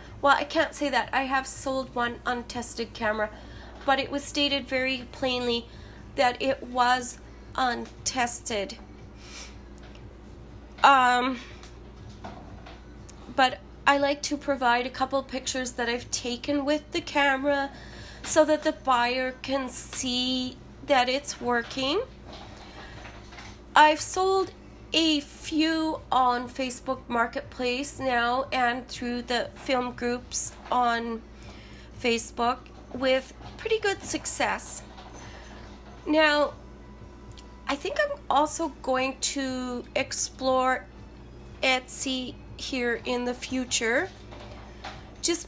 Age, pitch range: 30-49, 245-285 Hz